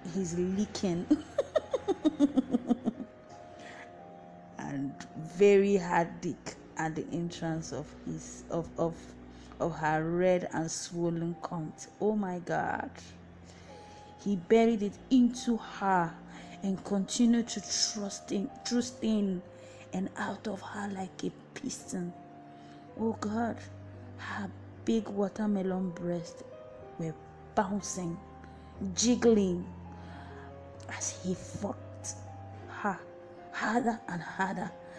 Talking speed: 100 wpm